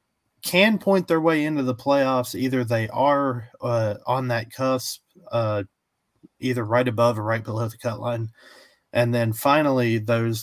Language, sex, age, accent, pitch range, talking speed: English, male, 30-49, American, 115-135 Hz, 160 wpm